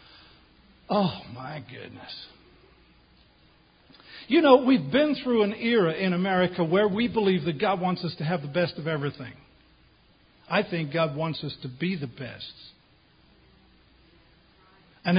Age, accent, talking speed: 50-69, American, 140 wpm